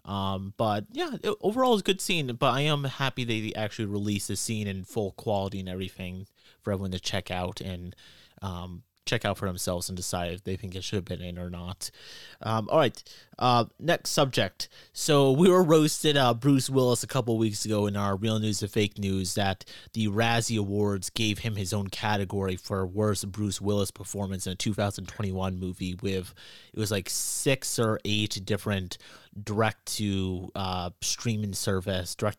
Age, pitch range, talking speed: 30-49, 95-115 Hz, 195 wpm